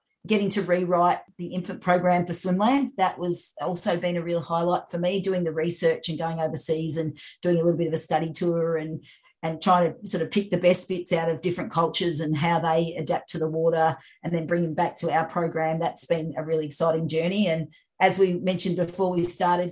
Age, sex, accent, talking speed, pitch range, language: 40-59, female, Australian, 225 wpm, 165-180 Hz, English